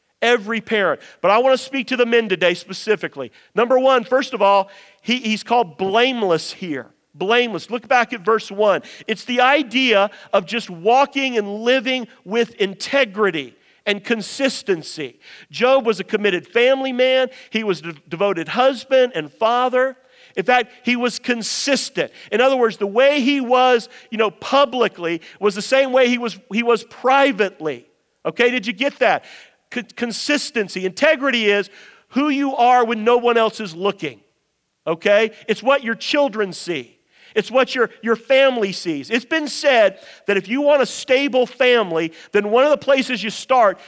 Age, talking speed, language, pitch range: 50-69, 170 wpm, English, 205-260 Hz